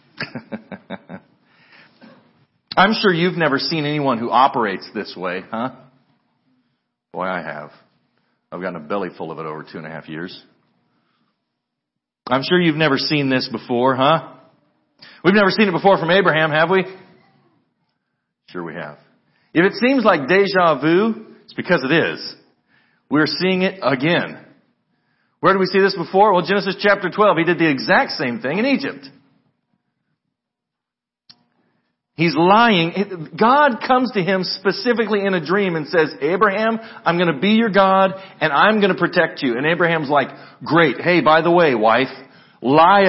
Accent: American